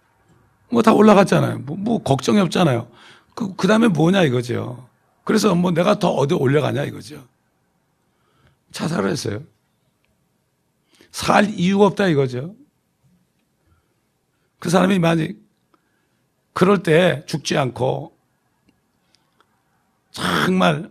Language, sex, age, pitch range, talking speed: English, male, 60-79, 125-180 Hz, 90 wpm